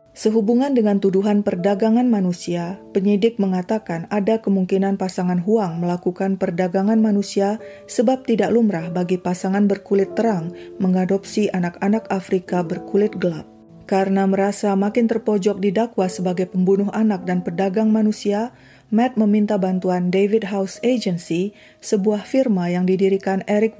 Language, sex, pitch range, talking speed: Indonesian, female, 185-215 Hz, 120 wpm